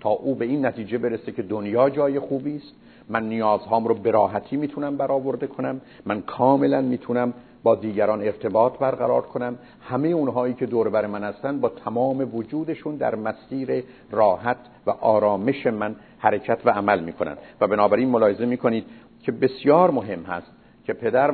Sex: male